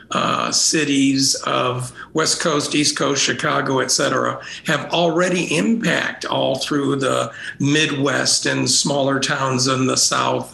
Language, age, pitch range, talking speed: English, 50-69, 130-170 Hz, 130 wpm